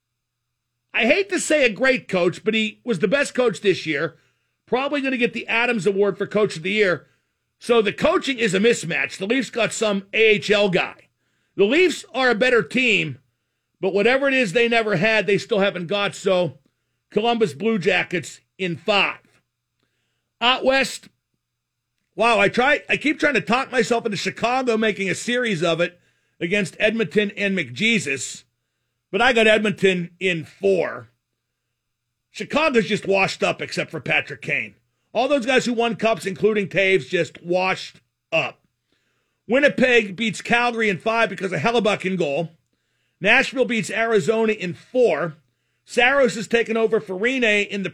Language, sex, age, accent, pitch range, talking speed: English, male, 50-69, American, 170-230 Hz, 160 wpm